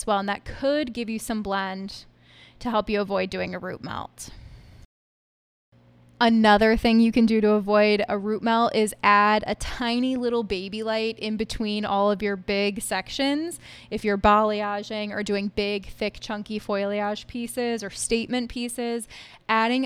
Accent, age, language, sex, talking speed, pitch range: American, 10-29, English, female, 165 wpm, 200-230 Hz